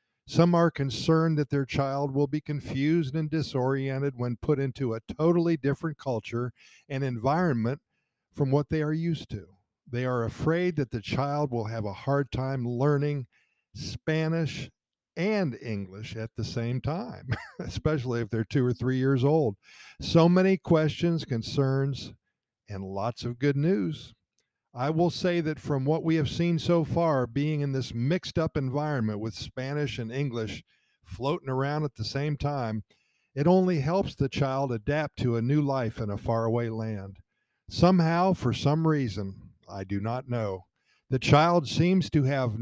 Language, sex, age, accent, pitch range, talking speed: English, male, 50-69, American, 120-155 Hz, 165 wpm